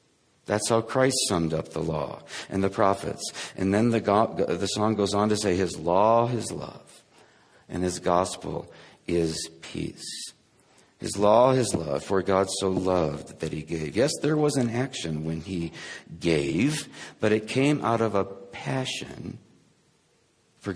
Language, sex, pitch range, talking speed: English, male, 95-130 Hz, 160 wpm